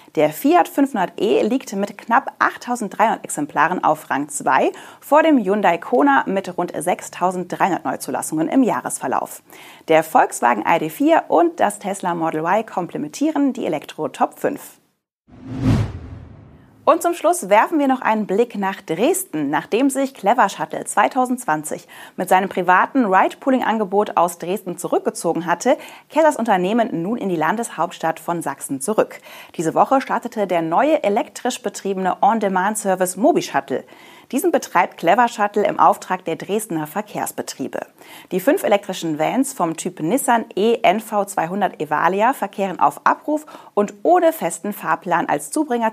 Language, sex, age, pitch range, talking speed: German, female, 30-49, 180-265 Hz, 135 wpm